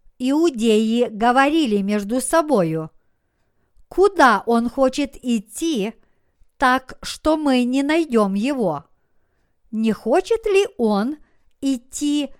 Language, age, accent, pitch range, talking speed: Russian, 50-69, native, 230-300 Hz, 90 wpm